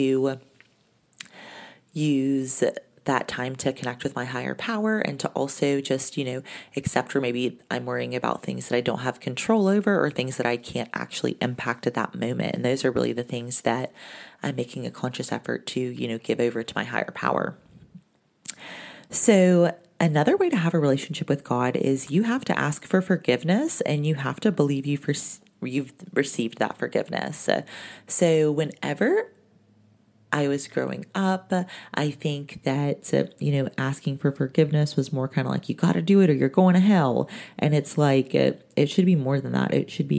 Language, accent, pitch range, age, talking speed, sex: English, American, 125-160 Hz, 30-49, 190 wpm, female